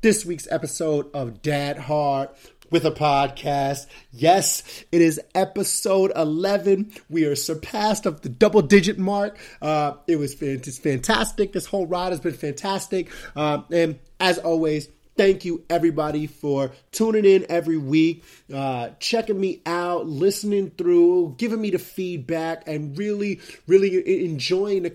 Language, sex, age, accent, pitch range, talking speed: English, male, 30-49, American, 145-185 Hz, 140 wpm